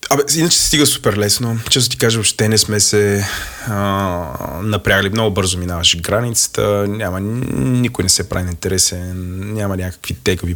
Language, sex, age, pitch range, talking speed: Bulgarian, male, 20-39, 95-115 Hz, 165 wpm